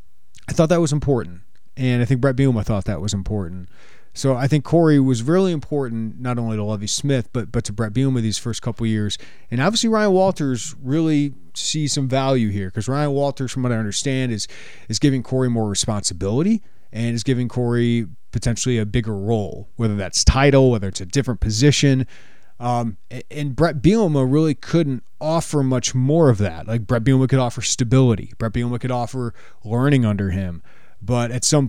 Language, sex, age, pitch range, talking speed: English, male, 30-49, 110-140 Hz, 195 wpm